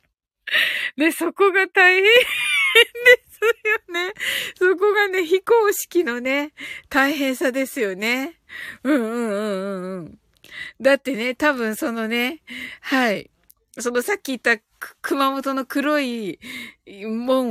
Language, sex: Japanese, female